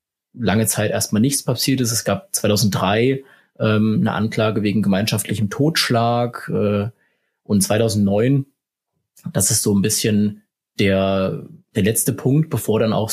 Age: 20-39